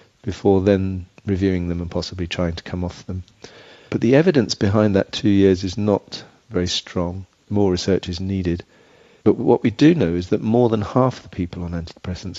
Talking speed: 195 wpm